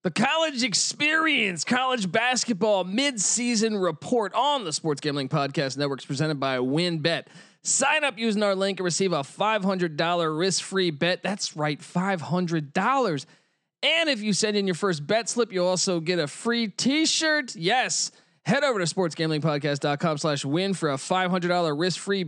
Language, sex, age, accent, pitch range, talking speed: English, male, 20-39, American, 155-215 Hz, 145 wpm